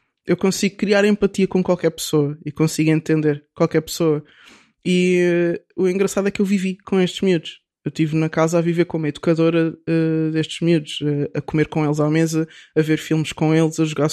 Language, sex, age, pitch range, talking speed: Portuguese, male, 20-39, 155-190 Hz, 200 wpm